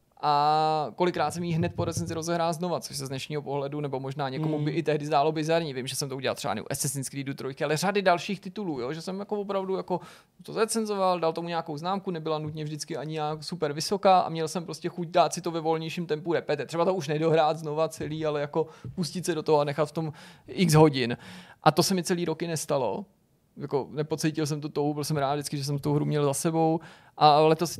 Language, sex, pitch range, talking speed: Czech, male, 140-160 Hz, 240 wpm